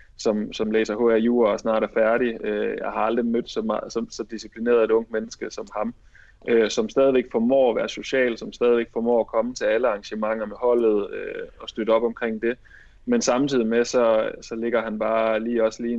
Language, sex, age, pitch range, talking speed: Danish, male, 20-39, 110-125 Hz, 210 wpm